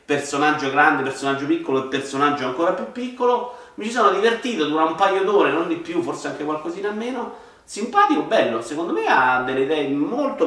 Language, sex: Italian, male